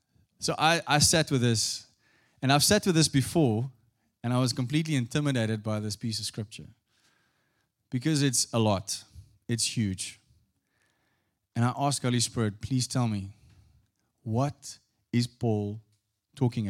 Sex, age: male, 30-49